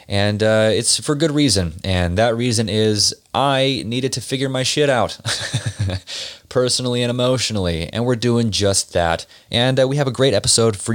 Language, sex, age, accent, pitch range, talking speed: English, male, 30-49, American, 95-120 Hz, 180 wpm